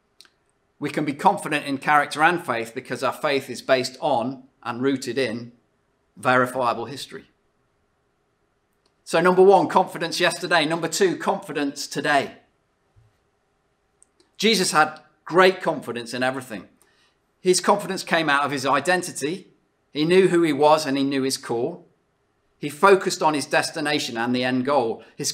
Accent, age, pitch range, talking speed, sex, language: British, 40-59, 135-175 Hz, 145 wpm, male, English